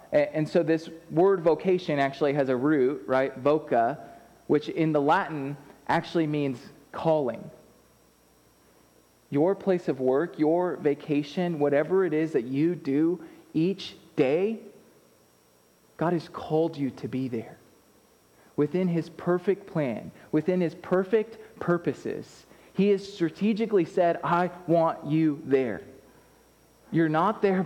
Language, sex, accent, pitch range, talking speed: English, male, American, 155-200 Hz, 125 wpm